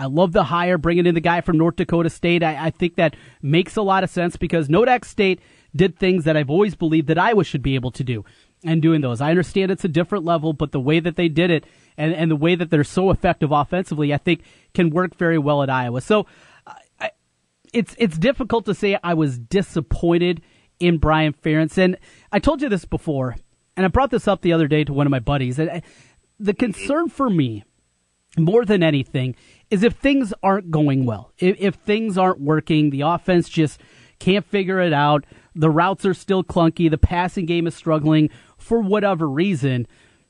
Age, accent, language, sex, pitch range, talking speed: 30-49, American, English, male, 155-195 Hz, 210 wpm